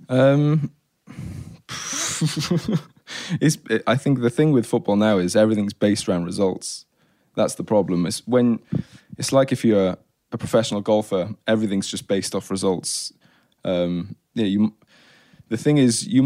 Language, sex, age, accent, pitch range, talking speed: English, male, 20-39, British, 105-125 Hz, 145 wpm